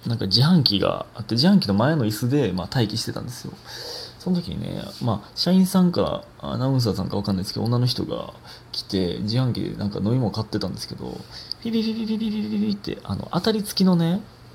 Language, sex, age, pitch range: Japanese, male, 20-39, 105-150 Hz